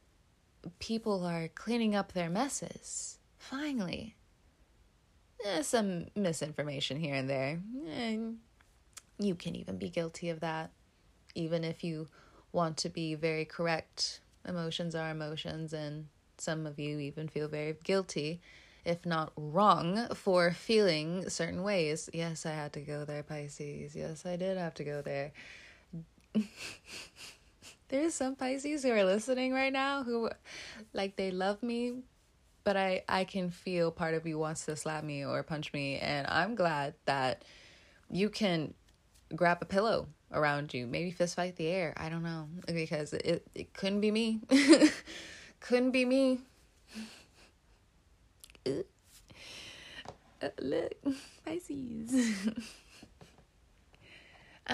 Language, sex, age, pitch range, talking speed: English, female, 20-39, 155-225 Hz, 130 wpm